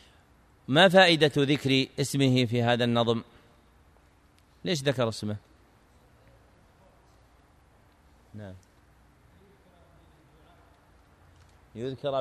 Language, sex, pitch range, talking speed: Arabic, male, 95-140 Hz, 55 wpm